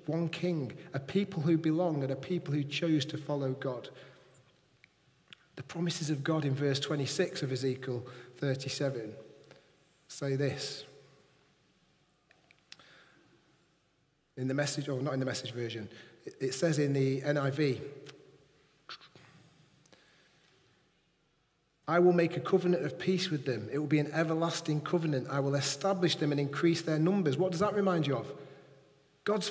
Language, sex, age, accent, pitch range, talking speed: English, male, 40-59, British, 140-185 Hz, 140 wpm